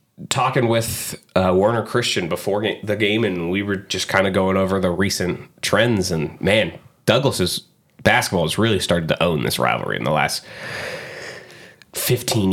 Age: 20-39